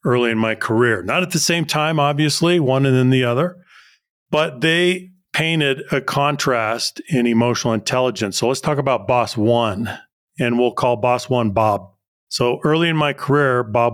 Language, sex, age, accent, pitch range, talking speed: English, male, 40-59, American, 115-140 Hz, 175 wpm